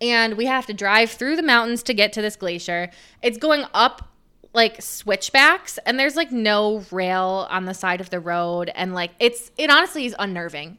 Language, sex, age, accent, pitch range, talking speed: English, female, 20-39, American, 195-245 Hz, 200 wpm